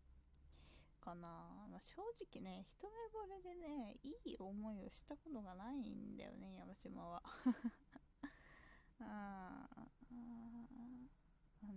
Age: 20-39